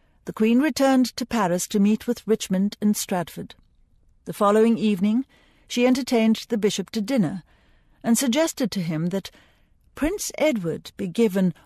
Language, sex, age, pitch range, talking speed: English, female, 60-79, 180-235 Hz, 150 wpm